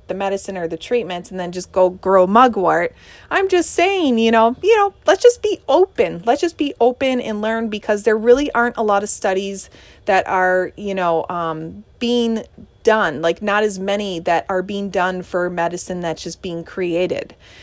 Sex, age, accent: female, 30-49, American